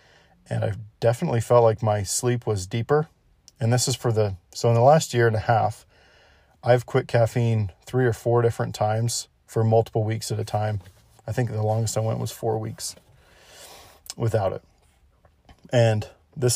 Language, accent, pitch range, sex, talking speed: English, American, 105-120 Hz, male, 180 wpm